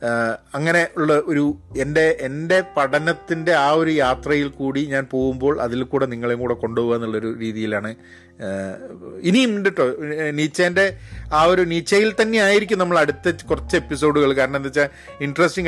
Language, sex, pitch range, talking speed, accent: Malayalam, male, 115-155 Hz, 140 wpm, native